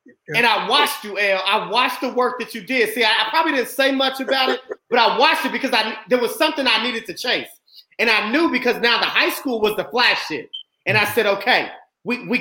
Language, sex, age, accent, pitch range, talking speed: English, male, 30-49, American, 215-270 Hz, 250 wpm